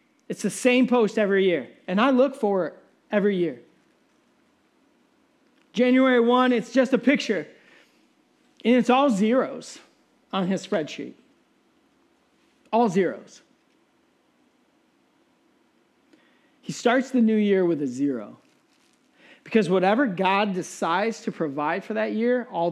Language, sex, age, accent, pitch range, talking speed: English, male, 40-59, American, 180-275 Hz, 120 wpm